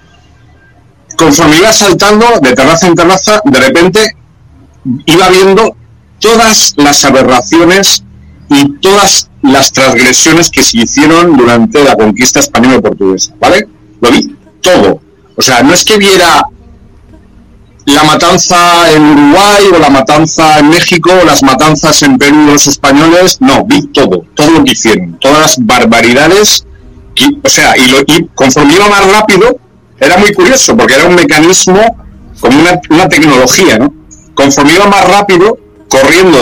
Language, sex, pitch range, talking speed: Spanish, male, 135-195 Hz, 140 wpm